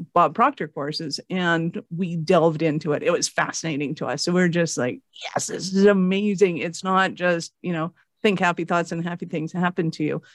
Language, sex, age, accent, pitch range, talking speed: English, female, 50-69, American, 165-190 Hz, 205 wpm